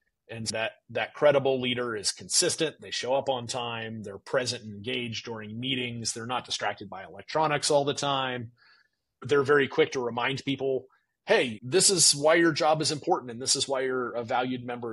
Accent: American